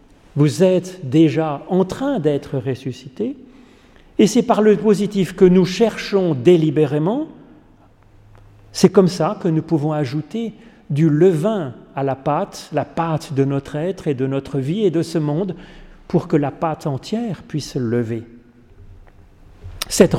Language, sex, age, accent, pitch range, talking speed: French, male, 40-59, French, 135-195 Hz, 145 wpm